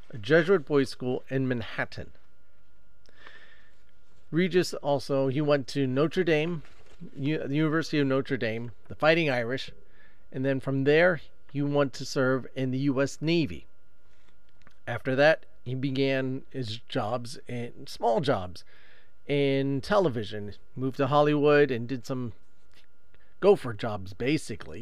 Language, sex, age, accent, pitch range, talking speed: English, male, 40-59, American, 110-150 Hz, 135 wpm